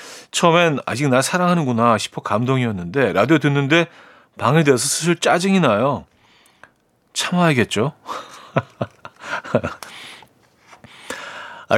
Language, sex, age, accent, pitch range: Korean, male, 40-59, native, 105-165 Hz